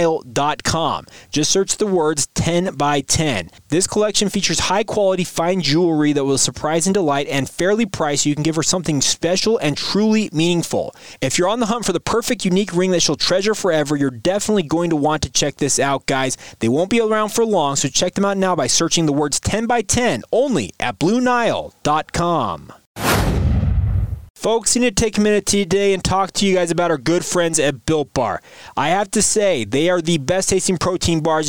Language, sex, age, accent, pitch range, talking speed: English, male, 30-49, American, 150-200 Hz, 210 wpm